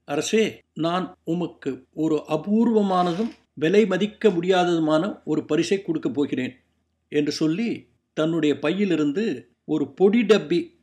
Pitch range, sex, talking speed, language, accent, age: 155-195 Hz, male, 105 wpm, Tamil, native, 60-79